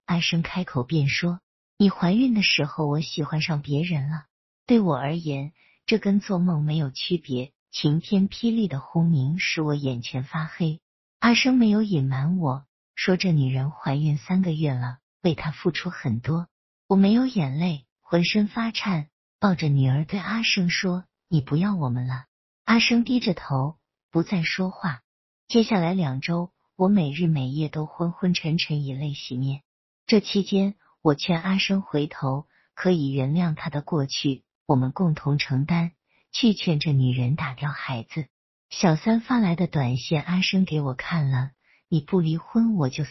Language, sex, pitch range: Chinese, female, 140-185 Hz